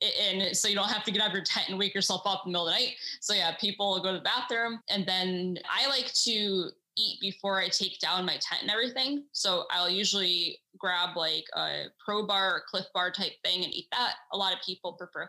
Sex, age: female, 10-29